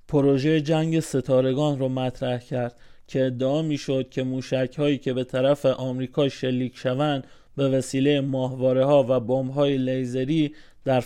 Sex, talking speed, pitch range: male, 130 wpm, 130-155 Hz